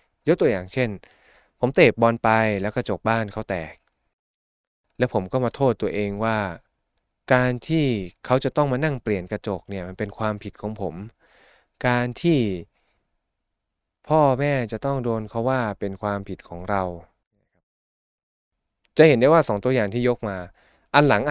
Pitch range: 95-125 Hz